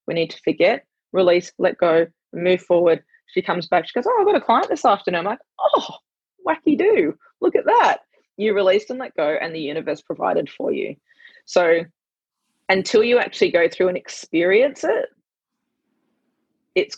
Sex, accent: female, Australian